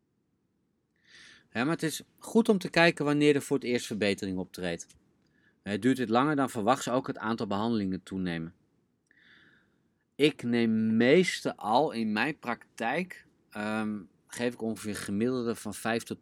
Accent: Dutch